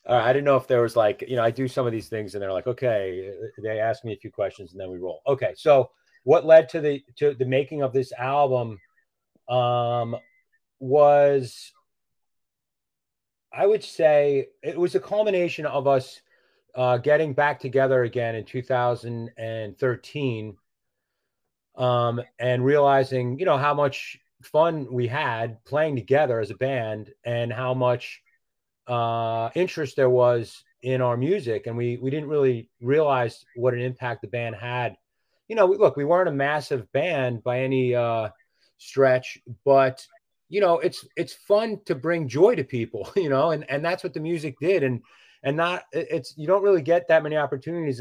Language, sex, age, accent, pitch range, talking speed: English, male, 30-49, American, 120-155 Hz, 175 wpm